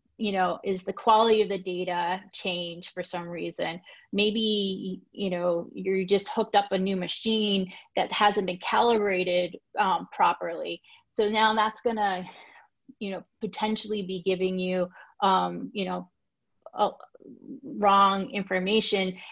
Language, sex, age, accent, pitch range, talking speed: English, female, 30-49, American, 185-215 Hz, 135 wpm